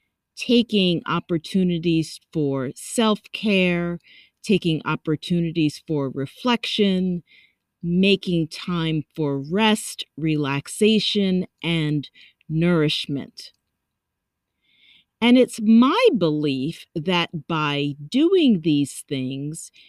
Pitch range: 150-195 Hz